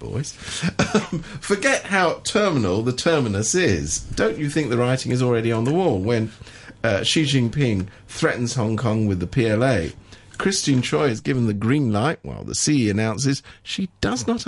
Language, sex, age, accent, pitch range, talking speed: English, male, 50-69, British, 100-125 Hz, 175 wpm